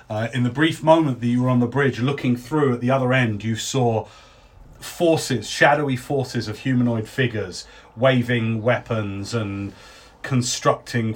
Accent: British